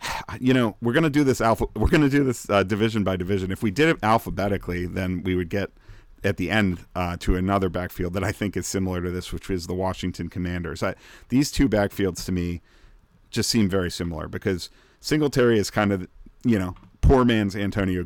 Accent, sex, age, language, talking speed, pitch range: American, male, 40-59, English, 215 wpm, 90-105 Hz